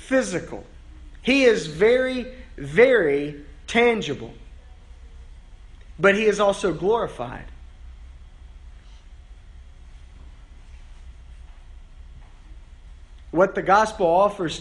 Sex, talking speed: male, 60 wpm